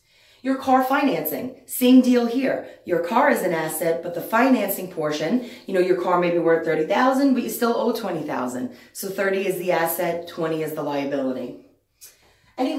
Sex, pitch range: female, 175-250 Hz